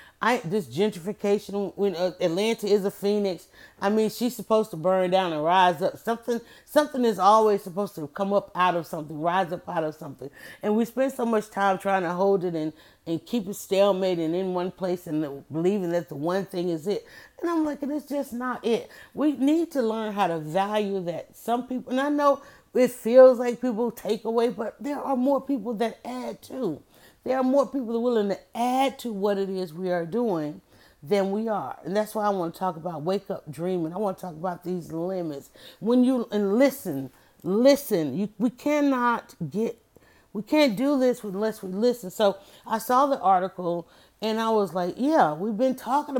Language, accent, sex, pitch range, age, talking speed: English, American, female, 180-240 Hz, 30-49, 210 wpm